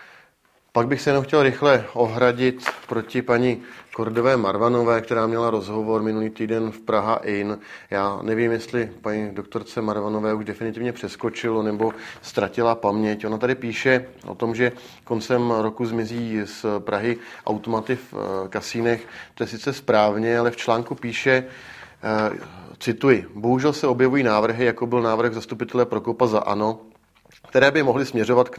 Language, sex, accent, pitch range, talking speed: Czech, male, native, 105-120 Hz, 145 wpm